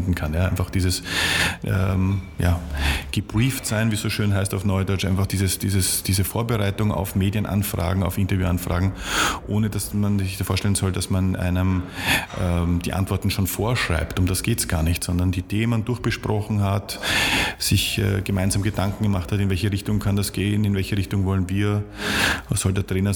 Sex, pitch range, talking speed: male, 90-105 Hz, 180 wpm